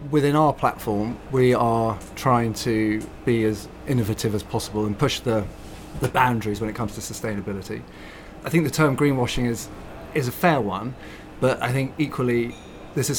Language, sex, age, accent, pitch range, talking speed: English, male, 30-49, British, 105-125 Hz, 175 wpm